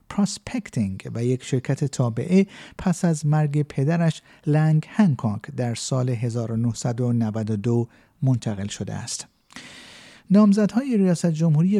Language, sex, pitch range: Persian, male, 125-170 Hz